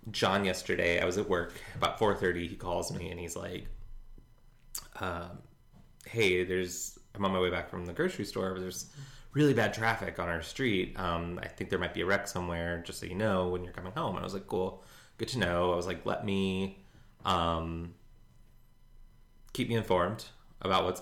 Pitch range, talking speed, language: 85-105 Hz, 205 wpm, English